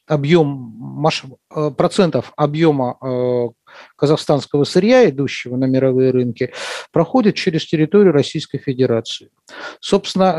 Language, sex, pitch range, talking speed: Russian, male, 135-185 Hz, 85 wpm